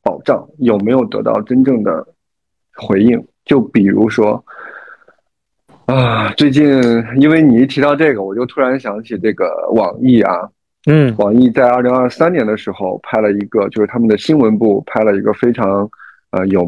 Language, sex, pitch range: Chinese, male, 105-135 Hz